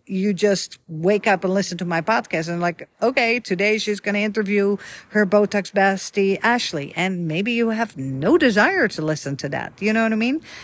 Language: English